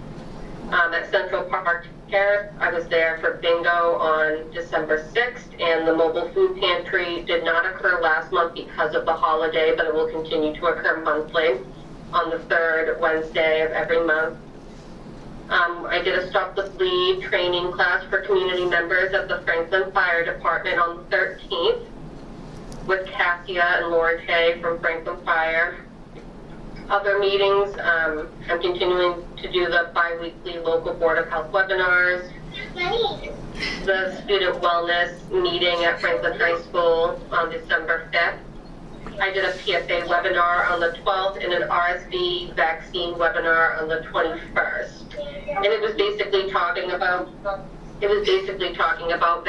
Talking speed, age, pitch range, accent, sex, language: 145 wpm, 30-49, 170-190 Hz, American, female, English